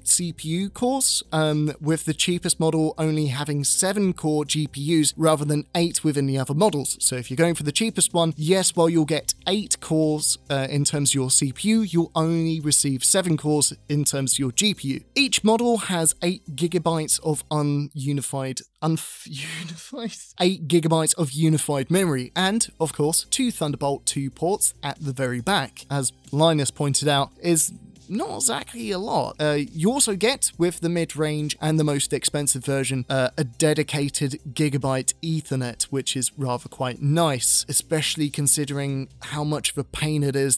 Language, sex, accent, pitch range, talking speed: English, male, British, 140-170 Hz, 170 wpm